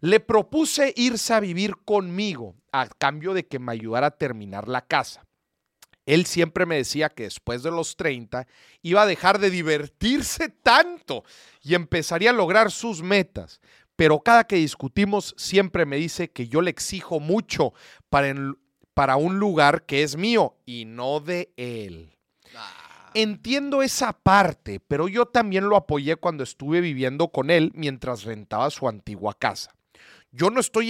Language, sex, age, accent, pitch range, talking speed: Spanish, male, 40-59, Mexican, 140-195 Hz, 155 wpm